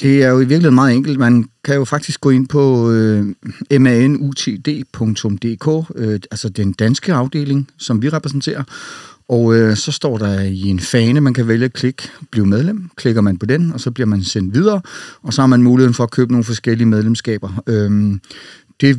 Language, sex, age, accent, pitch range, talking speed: Danish, male, 30-49, native, 110-130 Hz, 200 wpm